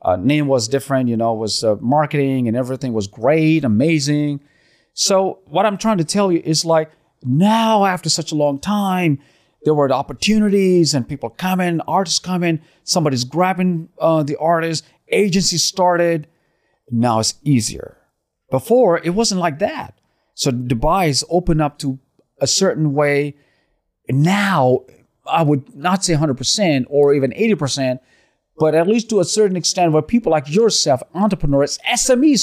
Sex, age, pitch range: male, 40-59, 145-195 Hz